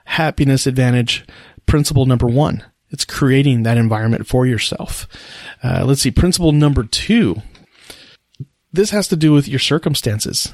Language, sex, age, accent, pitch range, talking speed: English, male, 40-59, American, 125-155 Hz, 135 wpm